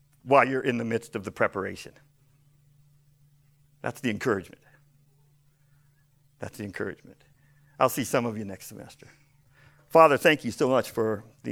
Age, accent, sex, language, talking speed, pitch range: 50-69, American, male, English, 145 wpm, 120-145 Hz